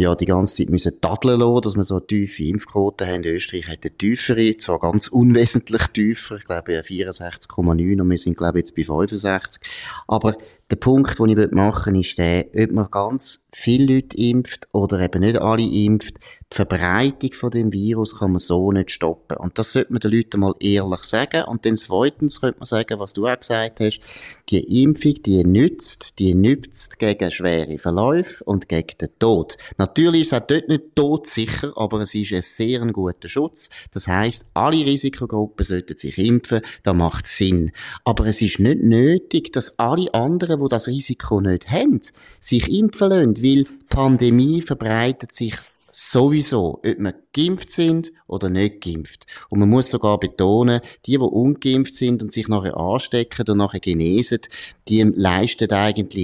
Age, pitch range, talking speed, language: 30-49, 95-125 Hz, 180 wpm, German